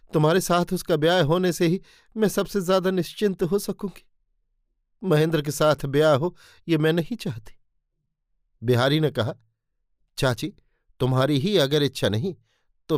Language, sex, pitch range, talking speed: Hindi, male, 125-165 Hz, 150 wpm